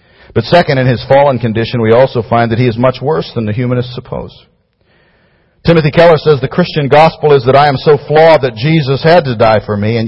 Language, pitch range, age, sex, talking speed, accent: English, 105-150 Hz, 50-69, male, 225 wpm, American